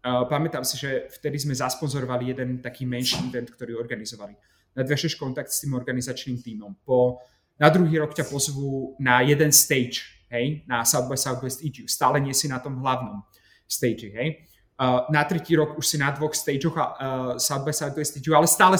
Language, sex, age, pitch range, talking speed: Slovak, male, 30-49, 125-155 Hz, 185 wpm